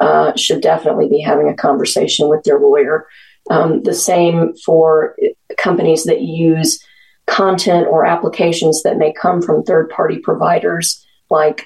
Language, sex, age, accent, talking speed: English, female, 40-59, American, 140 wpm